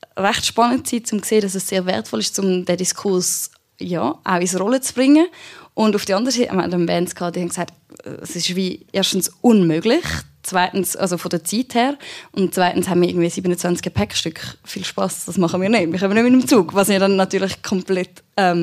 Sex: female